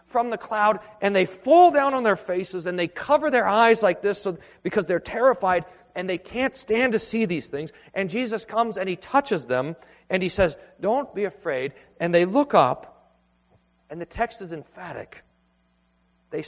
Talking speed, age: 185 wpm, 40-59